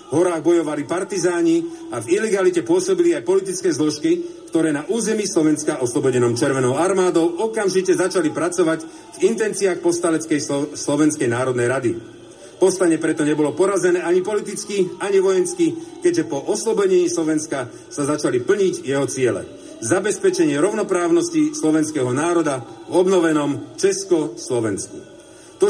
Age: 40-59